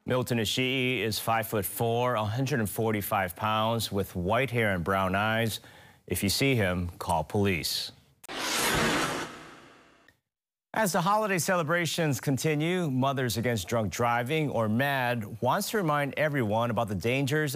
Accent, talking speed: American, 125 wpm